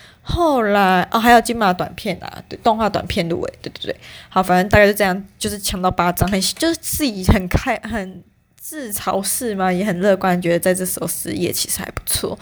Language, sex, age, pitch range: Chinese, female, 20-39, 180-205 Hz